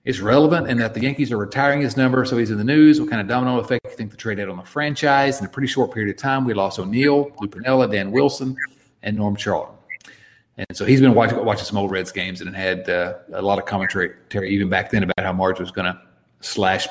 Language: English